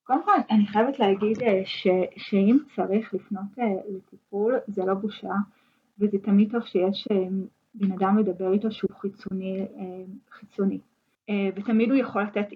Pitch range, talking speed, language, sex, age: 195-225 Hz, 135 wpm, Hebrew, female, 20-39